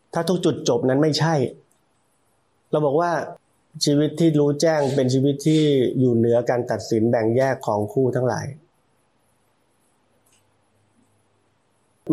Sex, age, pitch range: male, 30-49, 120-150 Hz